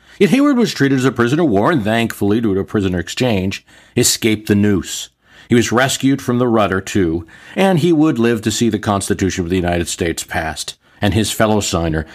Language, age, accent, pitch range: English, 40-59, American, 90-120 Hz